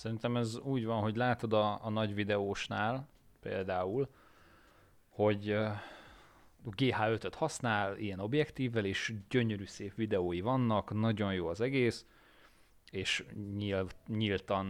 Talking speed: 125 wpm